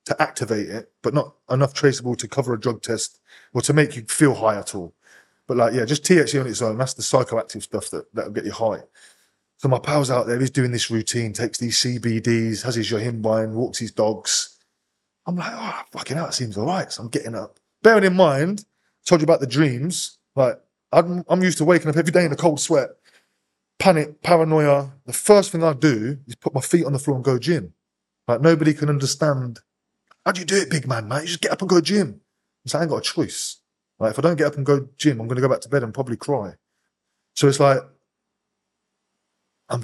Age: 20-39